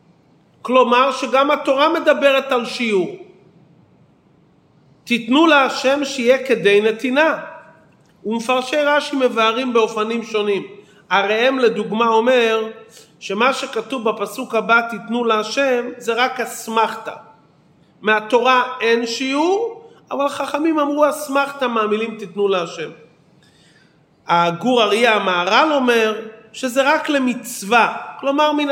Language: Hebrew